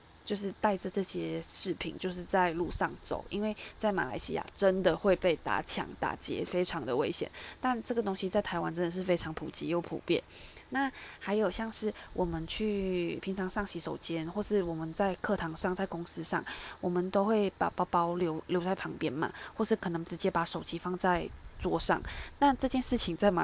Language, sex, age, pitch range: Chinese, female, 20-39, 170-200 Hz